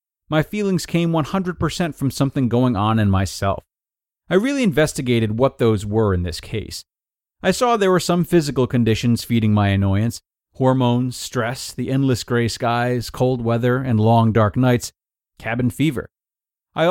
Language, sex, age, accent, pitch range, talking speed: English, male, 30-49, American, 115-160 Hz, 155 wpm